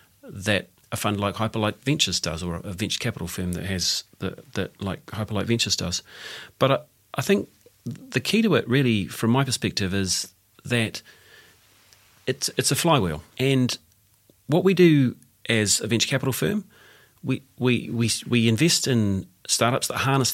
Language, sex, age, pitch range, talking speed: English, male, 40-59, 100-130 Hz, 160 wpm